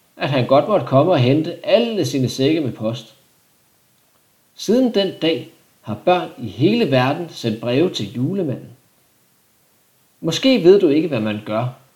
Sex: male